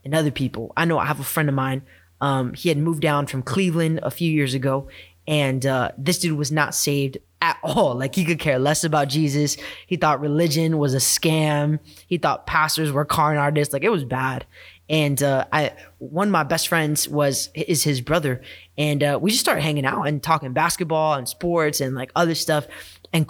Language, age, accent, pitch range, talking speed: English, 20-39, American, 135-165 Hz, 215 wpm